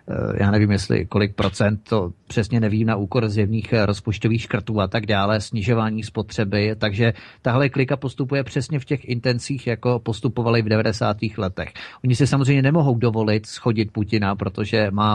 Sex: male